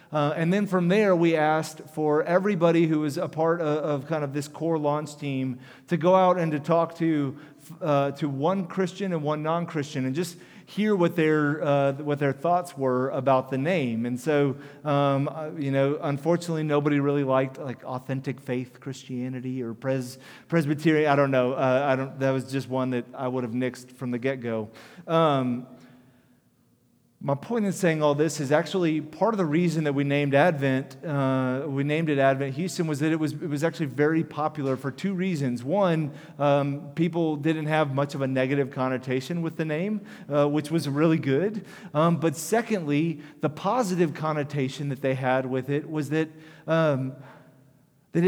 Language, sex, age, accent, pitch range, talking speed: English, male, 30-49, American, 135-165 Hz, 185 wpm